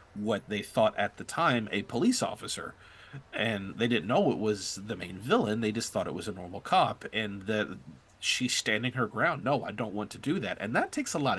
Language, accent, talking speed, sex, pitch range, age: English, American, 230 wpm, male, 110-145 Hz, 30-49